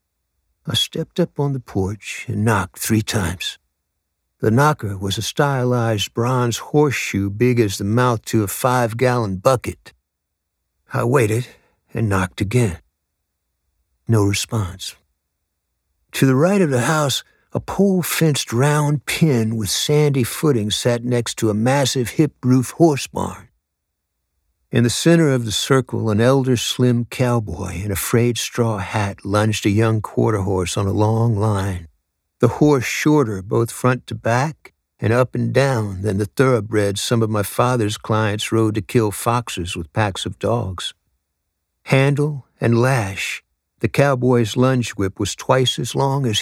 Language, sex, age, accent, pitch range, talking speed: English, male, 60-79, American, 95-130 Hz, 150 wpm